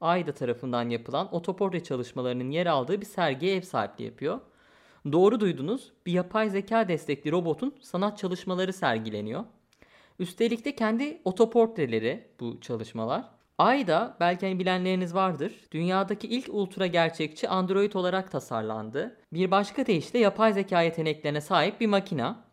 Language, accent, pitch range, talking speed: Turkish, native, 150-220 Hz, 130 wpm